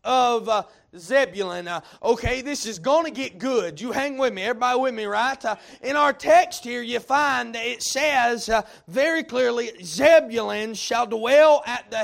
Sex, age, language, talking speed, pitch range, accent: male, 30-49, English, 180 wpm, 210-265 Hz, American